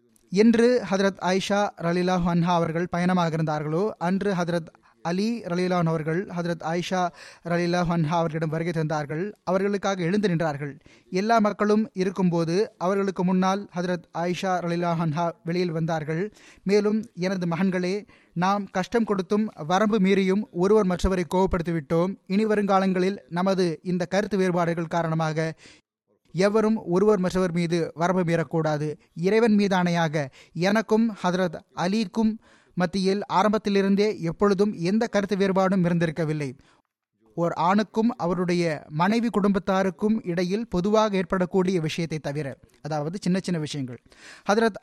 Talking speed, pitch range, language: 115 wpm, 170-200 Hz, Tamil